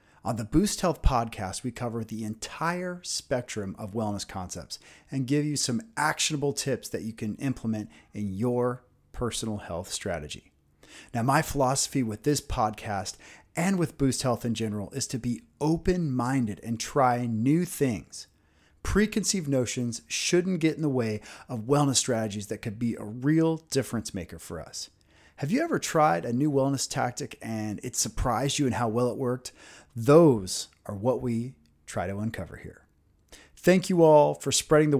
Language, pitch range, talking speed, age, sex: English, 105-140 Hz, 170 wpm, 30-49, male